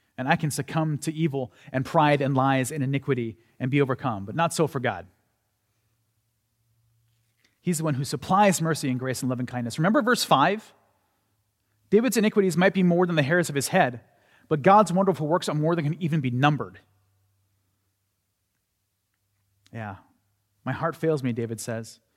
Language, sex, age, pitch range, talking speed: English, male, 30-49, 105-160 Hz, 175 wpm